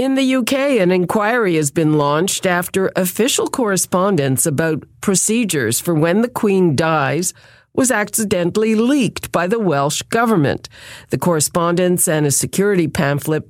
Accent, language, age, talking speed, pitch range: American, English, 50-69, 140 wpm, 145-200 Hz